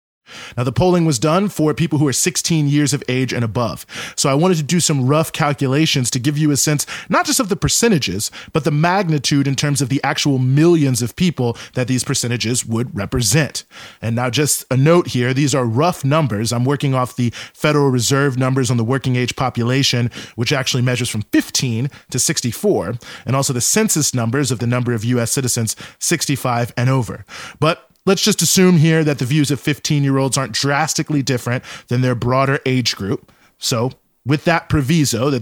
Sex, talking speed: male, 195 wpm